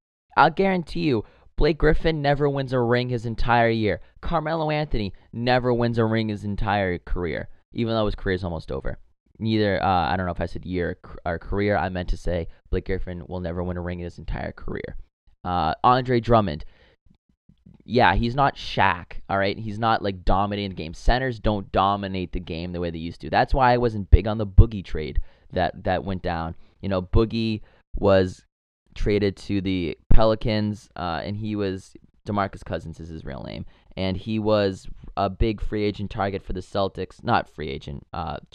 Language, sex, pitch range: English, male, 90-115 Hz